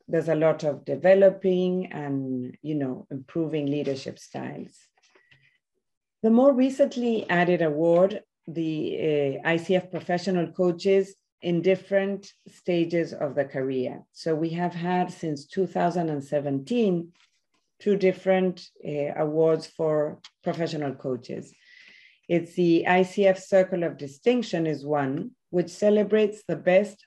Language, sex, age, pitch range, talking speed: German, female, 40-59, 150-195 Hz, 115 wpm